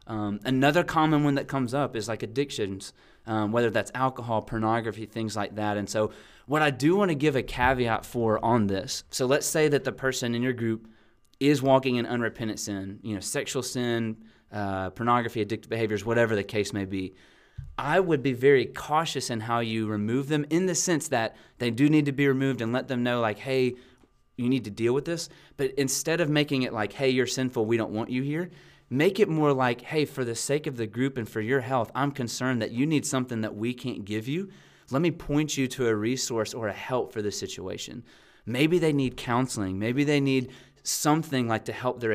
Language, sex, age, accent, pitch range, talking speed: English, male, 30-49, American, 110-140 Hz, 220 wpm